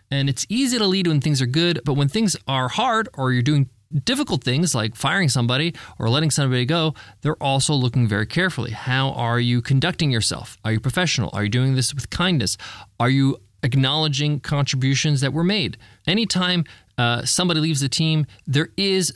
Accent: American